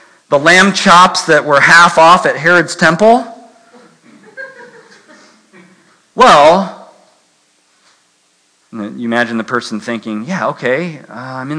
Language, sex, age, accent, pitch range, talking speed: English, male, 40-59, American, 135-210 Hz, 110 wpm